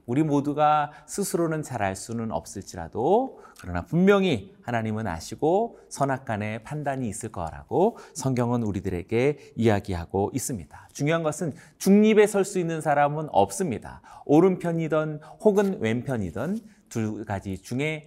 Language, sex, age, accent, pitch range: Korean, male, 30-49, native, 110-165 Hz